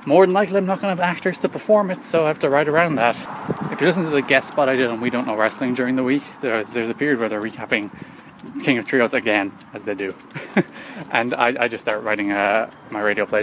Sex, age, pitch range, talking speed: male, 20-39, 110-170 Hz, 265 wpm